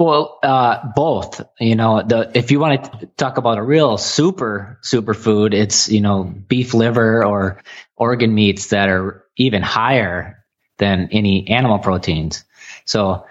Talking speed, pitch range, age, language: 150 wpm, 105-130 Hz, 20-39, English